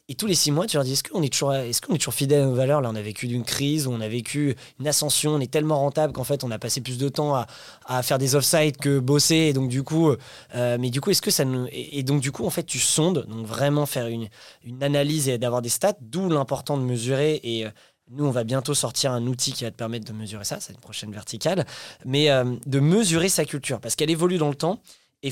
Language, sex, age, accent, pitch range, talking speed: French, male, 20-39, French, 125-155 Hz, 265 wpm